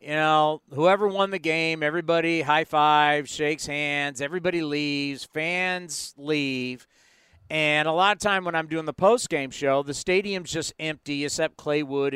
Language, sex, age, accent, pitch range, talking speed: English, male, 50-69, American, 160-205 Hz, 160 wpm